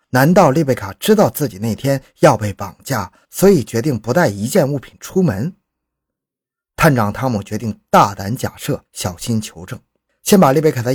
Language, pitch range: Chinese, 105-150 Hz